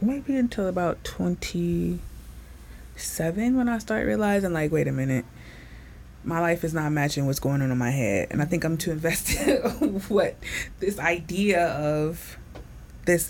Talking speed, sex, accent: 160 wpm, female, American